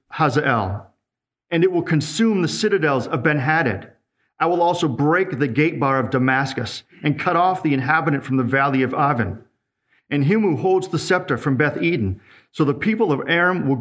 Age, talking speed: 40-59, 185 wpm